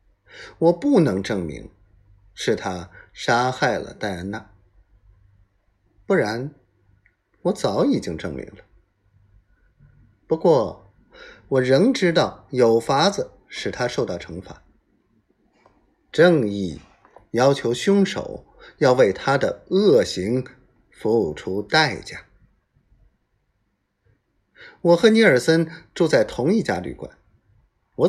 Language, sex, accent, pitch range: Chinese, male, native, 95-135 Hz